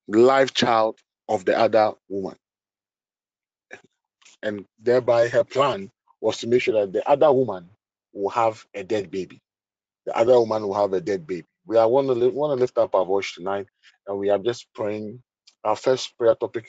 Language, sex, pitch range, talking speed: English, male, 110-135 Hz, 185 wpm